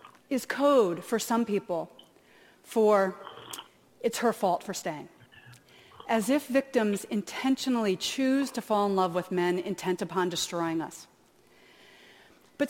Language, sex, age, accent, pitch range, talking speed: English, female, 40-59, American, 185-245 Hz, 130 wpm